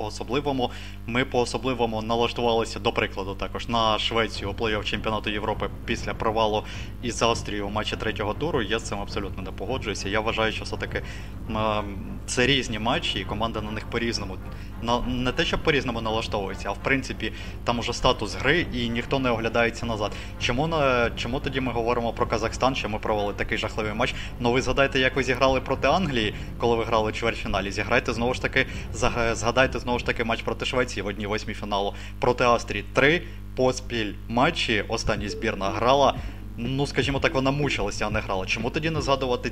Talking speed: 175 wpm